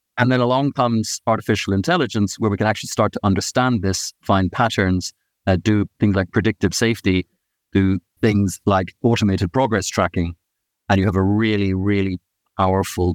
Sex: male